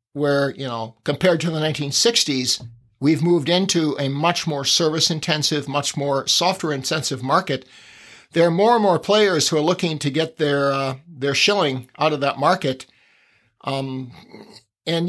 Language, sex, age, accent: English, male, 50-69, American